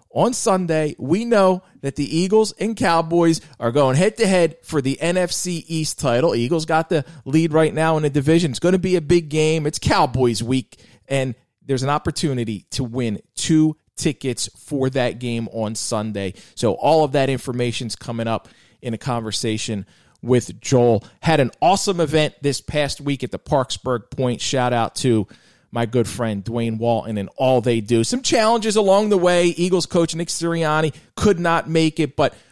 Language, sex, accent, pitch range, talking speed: English, male, American, 110-155 Hz, 180 wpm